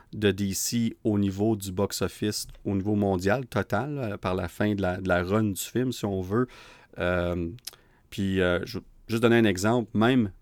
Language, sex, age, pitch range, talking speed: French, male, 30-49, 95-120 Hz, 190 wpm